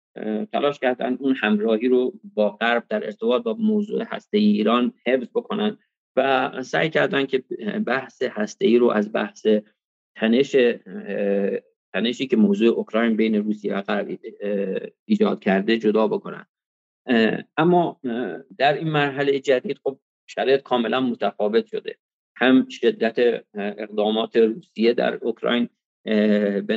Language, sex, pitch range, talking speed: English, male, 110-170 Hz, 125 wpm